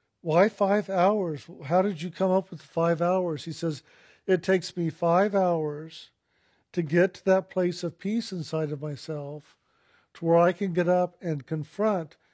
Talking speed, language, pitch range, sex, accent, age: 175 wpm, English, 155-175 Hz, male, American, 50-69